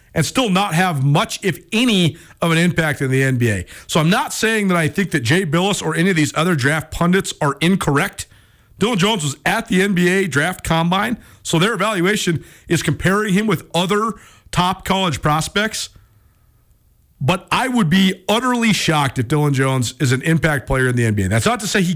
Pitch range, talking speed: 135-195 Hz, 195 wpm